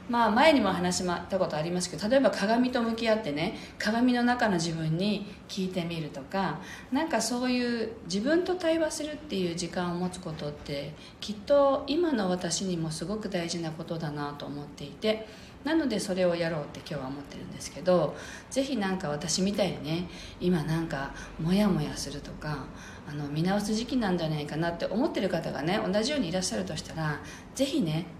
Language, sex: Japanese, female